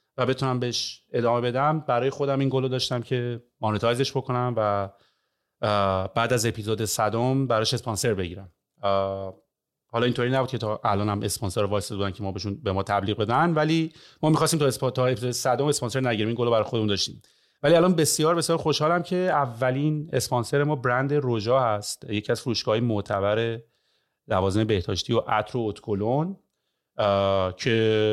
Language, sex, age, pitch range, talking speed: Persian, male, 30-49, 105-135 Hz, 150 wpm